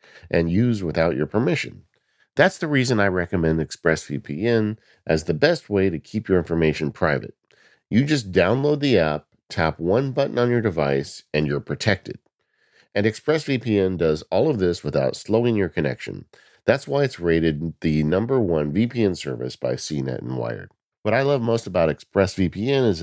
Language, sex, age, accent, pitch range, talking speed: English, male, 50-69, American, 80-115 Hz, 165 wpm